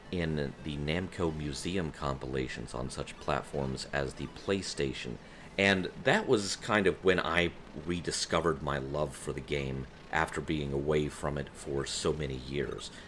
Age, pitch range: 40-59, 70-85 Hz